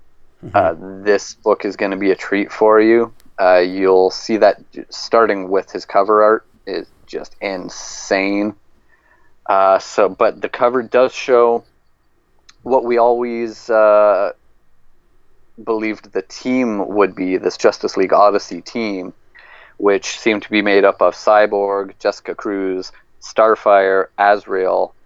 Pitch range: 95-110 Hz